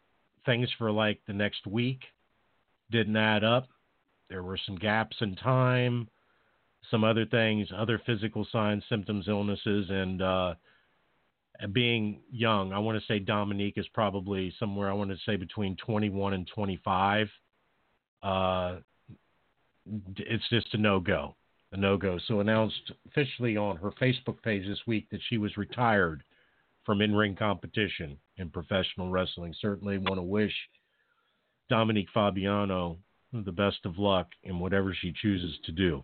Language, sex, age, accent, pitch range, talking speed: English, male, 50-69, American, 95-115 Hz, 145 wpm